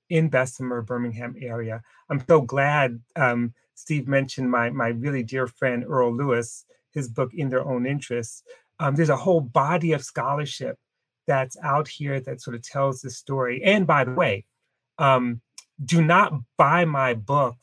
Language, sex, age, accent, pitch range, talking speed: English, male, 30-49, American, 125-165 Hz, 165 wpm